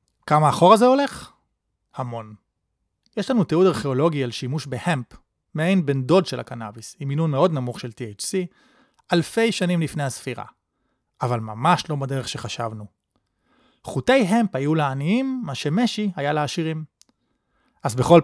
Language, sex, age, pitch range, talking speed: Hebrew, male, 30-49, 135-195 Hz, 140 wpm